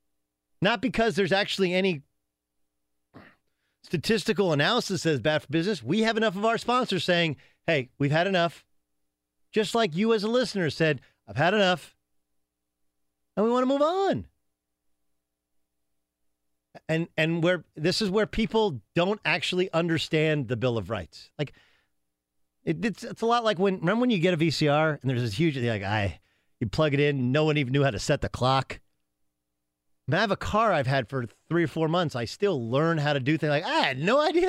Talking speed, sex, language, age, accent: 190 wpm, male, English, 40-59, American